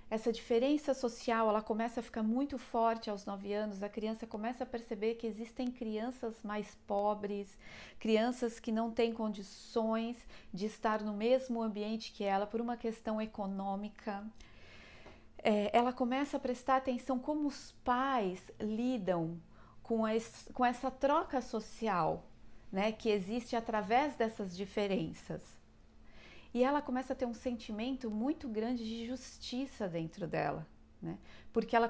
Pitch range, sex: 205-245 Hz, female